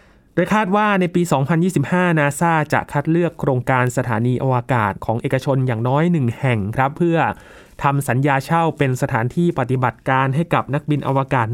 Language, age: Thai, 20-39